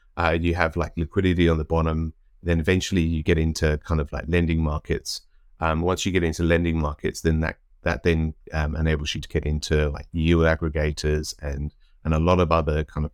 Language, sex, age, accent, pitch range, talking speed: English, male, 30-49, British, 75-85 Hz, 210 wpm